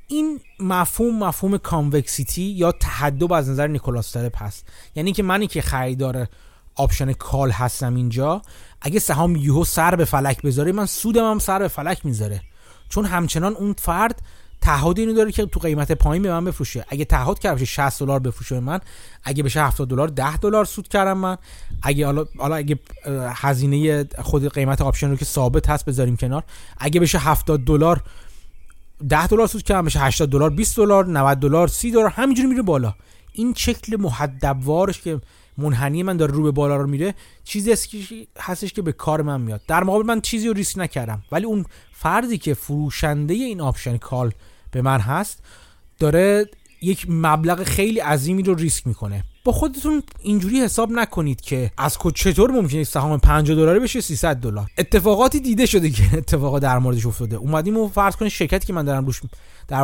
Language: Persian